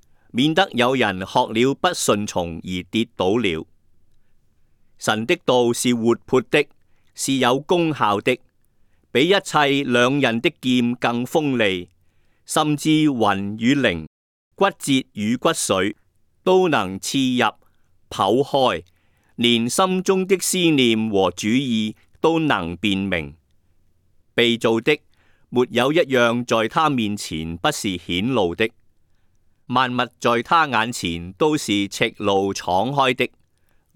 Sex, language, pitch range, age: male, Chinese, 95-140 Hz, 50-69